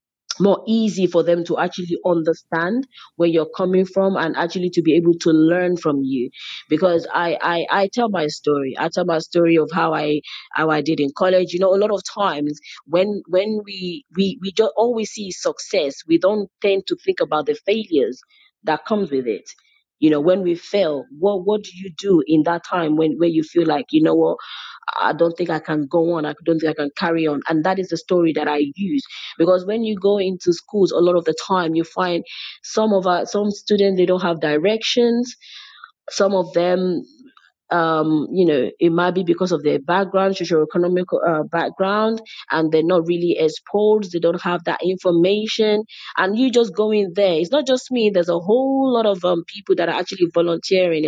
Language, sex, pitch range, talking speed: English, female, 165-205 Hz, 210 wpm